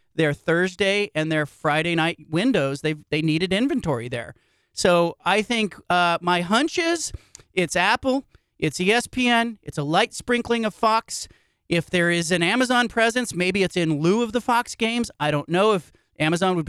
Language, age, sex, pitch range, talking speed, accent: English, 40-59, male, 155-195 Hz, 175 wpm, American